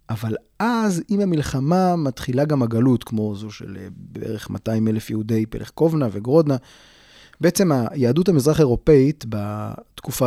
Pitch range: 115-150 Hz